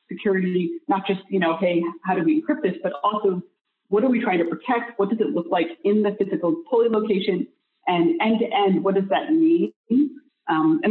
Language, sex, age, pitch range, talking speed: English, female, 30-49, 165-230 Hz, 215 wpm